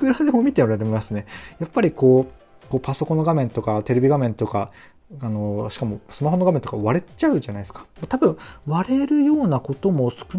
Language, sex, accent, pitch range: Japanese, male, native, 115-165 Hz